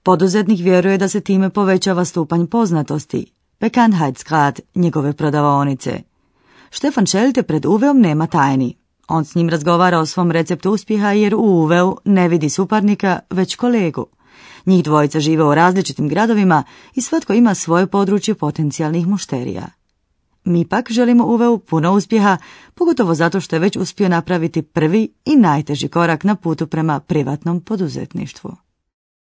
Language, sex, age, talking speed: Croatian, female, 30-49, 140 wpm